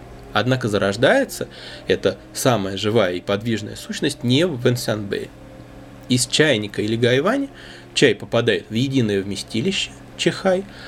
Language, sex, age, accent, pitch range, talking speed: Russian, male, 20-39, native, 105-130 Hz, 115 wpm